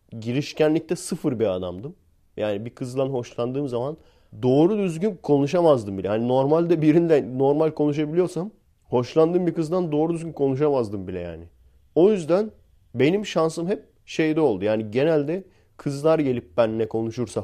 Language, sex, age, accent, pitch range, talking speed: Turkish, male, 30-49, native, 110-155 Hz, 135 wpm